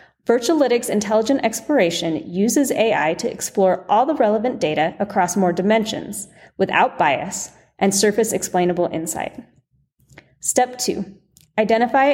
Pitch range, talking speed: 185-255 Hz, 110 wpm